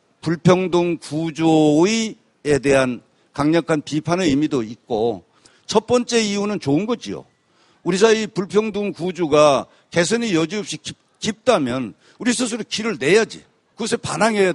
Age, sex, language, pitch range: 50-69, male, Korean, 155-210 Hz